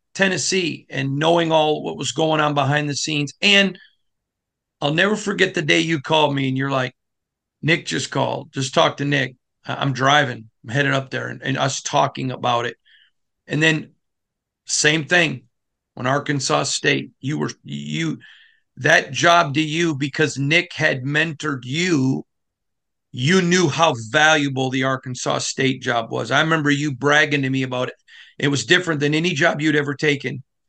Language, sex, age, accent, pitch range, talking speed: English, male, 40-59, American, 130-160 Hz, 170 wpm